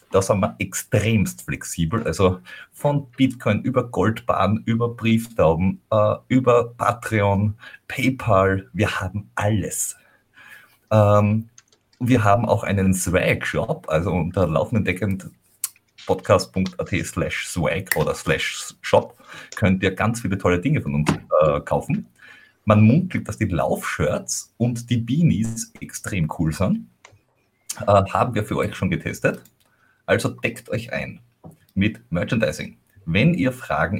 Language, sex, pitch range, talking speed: German, male, 95-120 Hz, 120 wpm